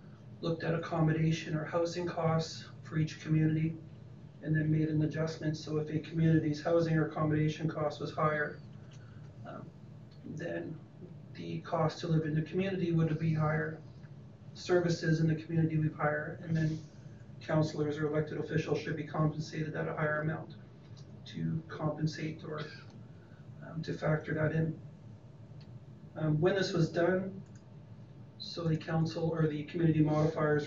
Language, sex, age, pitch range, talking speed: English, male, 40-59, 145-160 Hz, 150 wpm